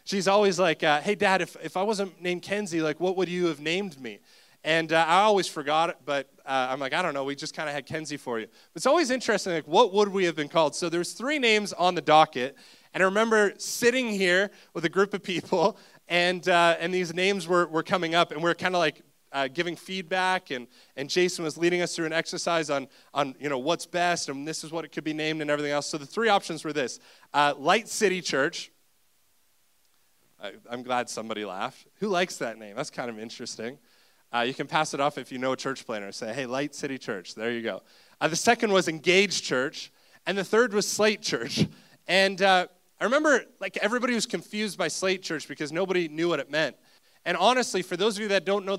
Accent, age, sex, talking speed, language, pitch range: American, 20-39, male, 235 wpm, English, 155-195 Hz